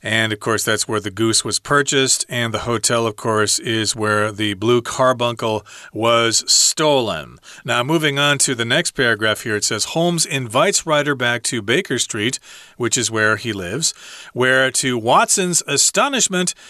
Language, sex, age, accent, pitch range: Chinese, male, 40-59, American, 110-135 Hz